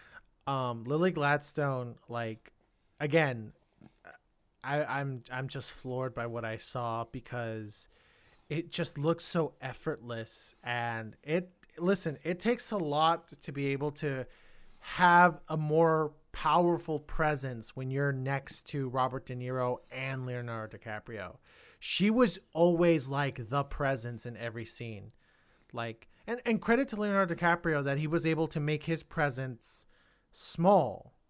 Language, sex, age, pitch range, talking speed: English, male, 30-49, 120-155 Hz, 135 wpm